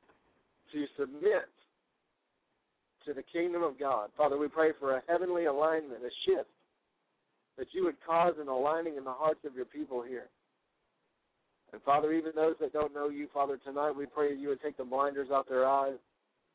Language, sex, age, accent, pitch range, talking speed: English, male, 60-79, American, 145-175 Hz, 180 wpm